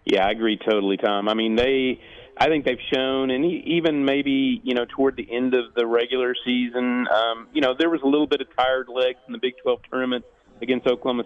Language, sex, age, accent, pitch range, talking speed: English, male, 40-59, American, 115-130 Hz, 225 wpm